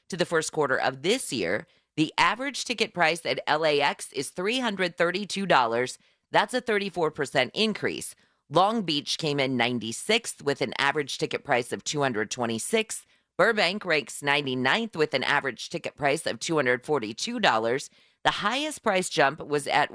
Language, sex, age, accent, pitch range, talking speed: English, female, 30-49, American, 135-205 Hz, 140 wpm